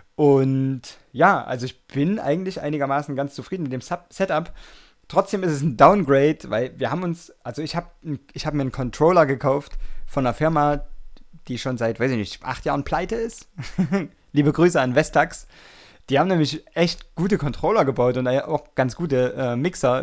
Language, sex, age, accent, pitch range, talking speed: German, male, 20-39, German, 125-160 Hz, 185 wpm